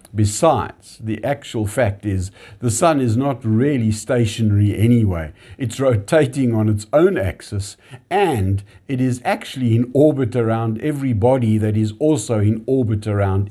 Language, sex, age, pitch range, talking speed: English, male, 60-79, 105-130 Hz, 145 wpm